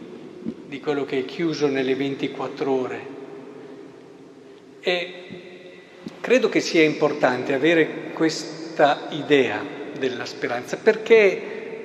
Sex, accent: male, native